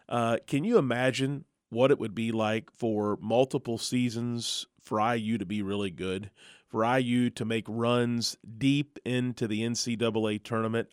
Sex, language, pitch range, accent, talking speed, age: male, English, 115-130 Hz, American, 155 wpm, 30-49